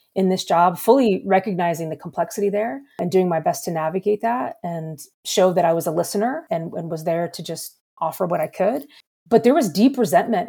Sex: female